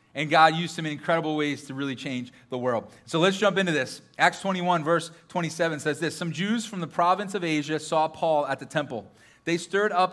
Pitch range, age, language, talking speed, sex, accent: 150-195 Hz, 30-49, English, 225 wpm, male, American